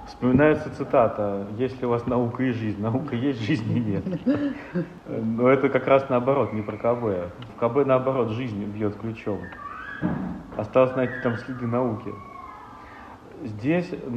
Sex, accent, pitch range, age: male, native, 105-130 Hz, 40-59